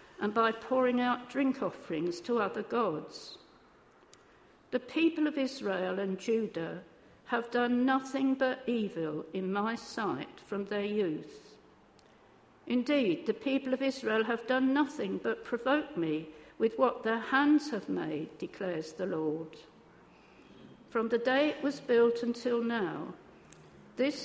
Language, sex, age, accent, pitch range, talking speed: English, female, 60-79, British, 205-260 Hz, 135 wpm